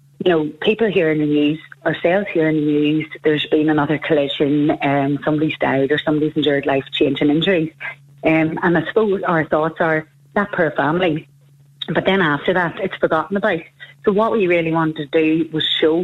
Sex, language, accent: female, English, Irish